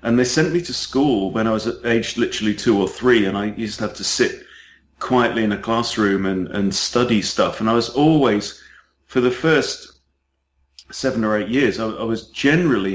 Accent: British